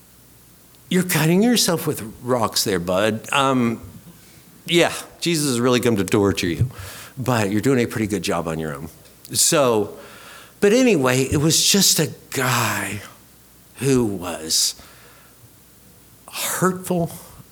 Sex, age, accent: male, 60-79, American